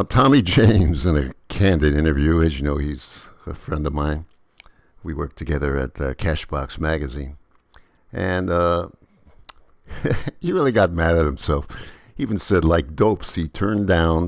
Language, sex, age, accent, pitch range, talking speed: English, male, 60-79, American, 75-95 Hz, 155 wpm